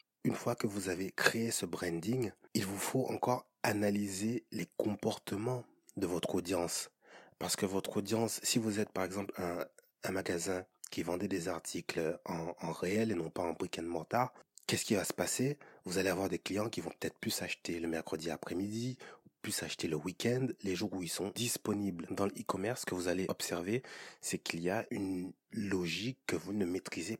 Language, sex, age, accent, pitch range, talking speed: French, male, 30-49, French, 90-110 Hz, 200 wpm